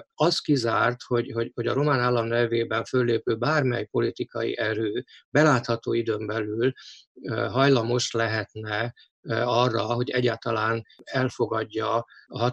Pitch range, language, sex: 115-135 Hz, Hungarian, male